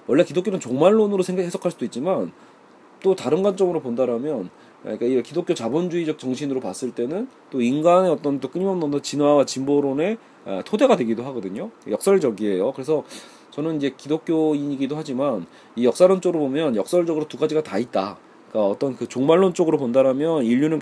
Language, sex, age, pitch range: Korean, male, 40-59, 125-170 Hz